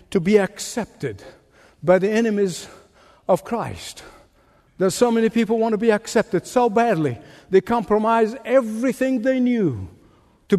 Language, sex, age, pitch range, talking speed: English, male, 60-79, 170-250 Hz, 145 wpm